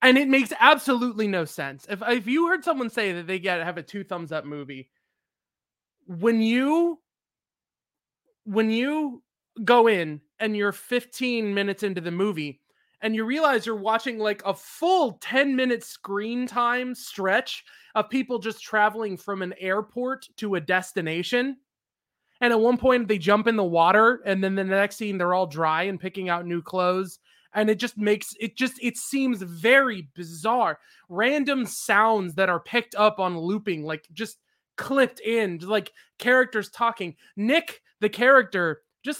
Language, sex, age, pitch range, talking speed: English, male, 20-39, 190-245 Hz, 165 wpm